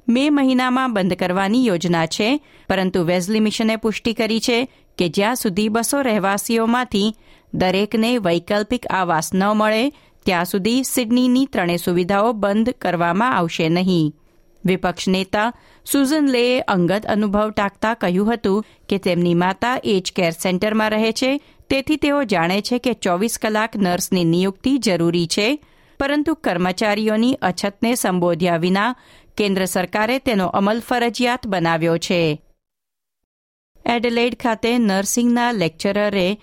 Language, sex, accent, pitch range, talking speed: Gujarati, female, native, 185-240 Hz, 110 wpm